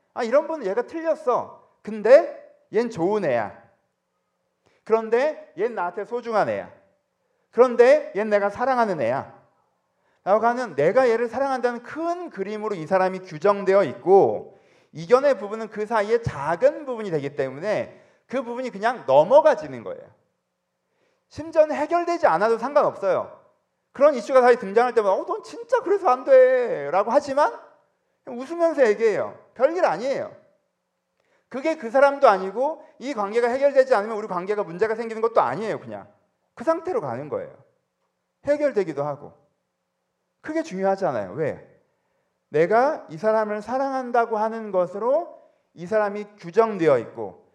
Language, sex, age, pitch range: Korean, male, 30-49, 215-305 Hz